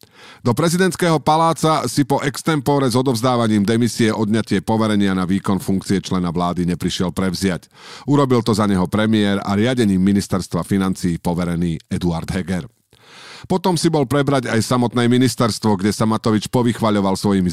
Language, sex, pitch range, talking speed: Slovak, male, 95-120 Hz, 145 wpm